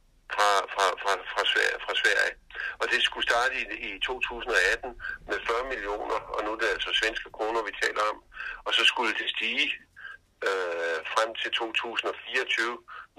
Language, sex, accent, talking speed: Danish, male, native, 165 wpm